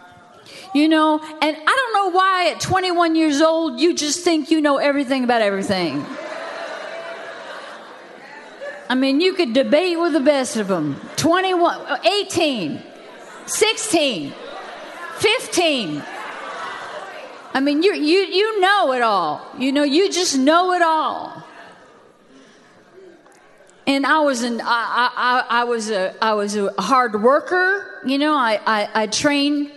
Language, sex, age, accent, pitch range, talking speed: English, female, 40-59, American, 250-330 Hz, 135 wpm